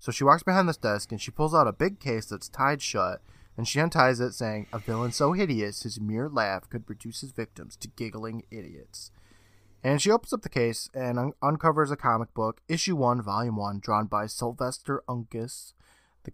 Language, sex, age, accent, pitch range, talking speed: English, male, 20-39, American, 105-135 Hz, 205 wpm